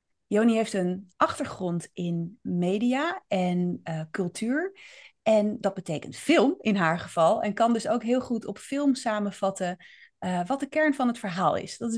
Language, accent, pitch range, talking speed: Dutch, Dutch, 200-260 Hz, 175 wpm